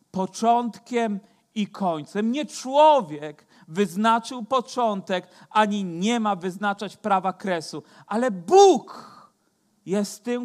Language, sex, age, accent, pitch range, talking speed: Polish, male, 40-59, native, 155-210 Hz, 100 wpm